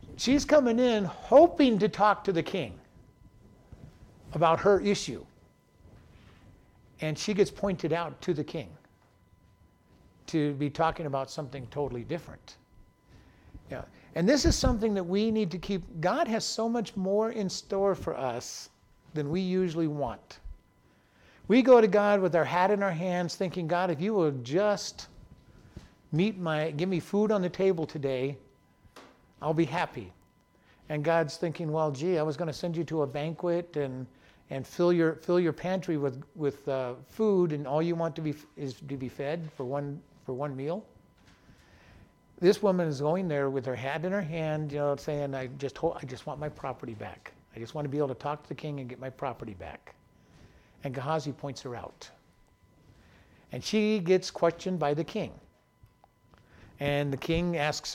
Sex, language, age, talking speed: male, English, 60-79, 180 wpm